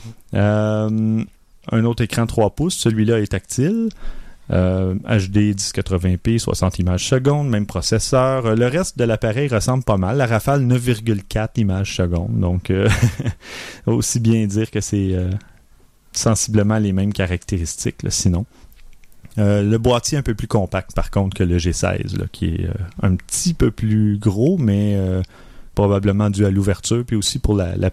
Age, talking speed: 30-49, 160 wpm